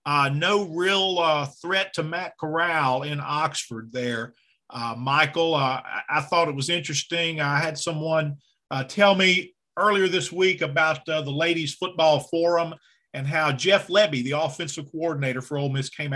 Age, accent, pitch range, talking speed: 40-59, American, 140-170 Hz, 165 wpm